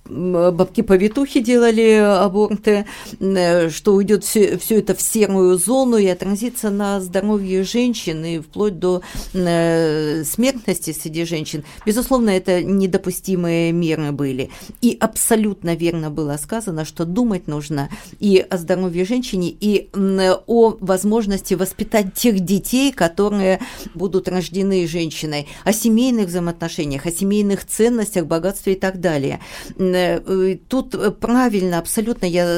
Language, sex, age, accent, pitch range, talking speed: Russian, female, 50-69, native, 175-210 Hz, 120 wpm